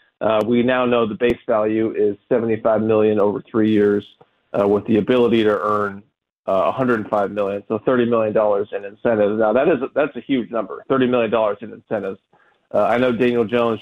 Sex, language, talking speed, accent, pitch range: male, English, 195 wpm, American, 110-125 Hz